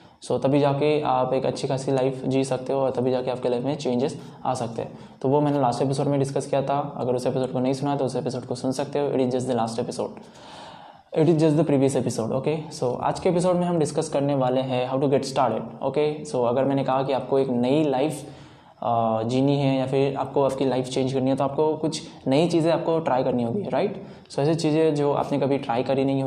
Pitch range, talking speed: 125-150 Hz, 255 wpm